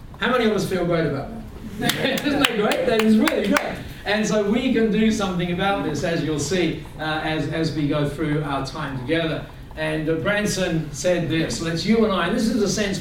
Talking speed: 225 wpm